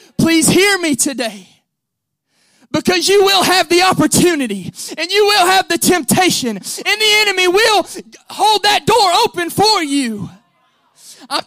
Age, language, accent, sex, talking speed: 20-39, English, American, male, 140 wpm